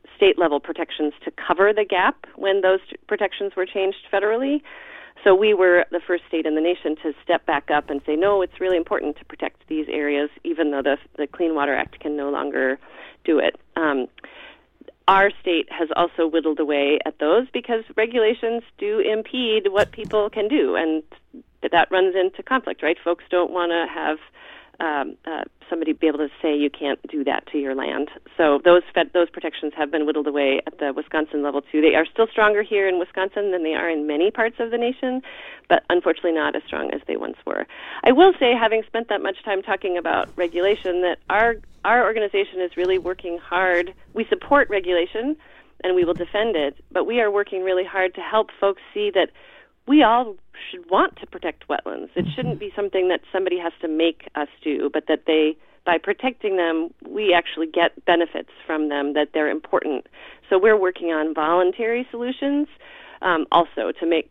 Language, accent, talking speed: English, American, 195 wpm